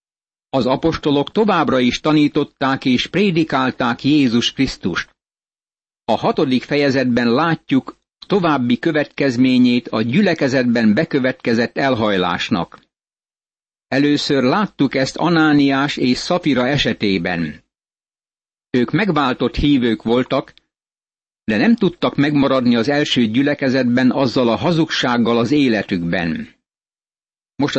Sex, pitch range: male, 120-150 Hz